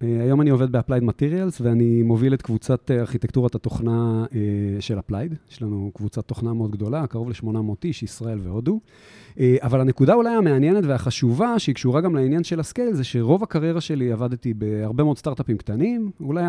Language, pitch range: Hebrew, 110-155 Hz